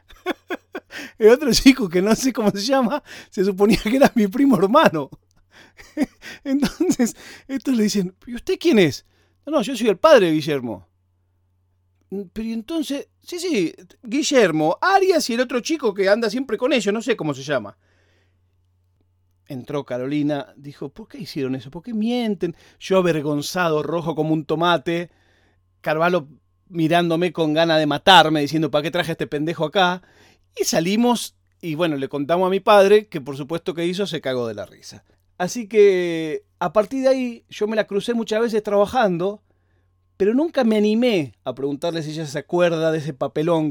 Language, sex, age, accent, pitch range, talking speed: Spanish, male, 40-59, Argentinian, 150-220 Hz, 175 wpm